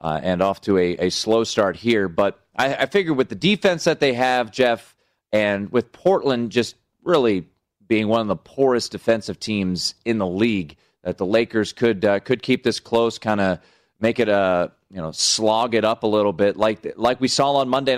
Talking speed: 215 wpm